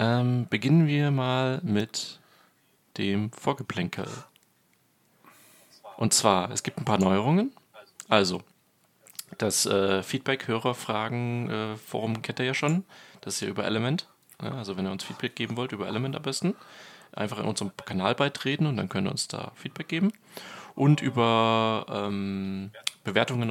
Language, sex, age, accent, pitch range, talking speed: German, male, 30-49, German, 100-135 Hz, 145 wpm